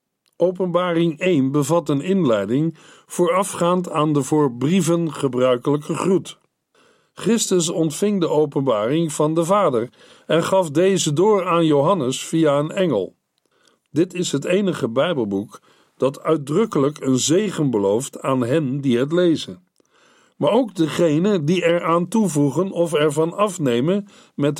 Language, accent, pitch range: Dutch, Dutch, 140-185 Hz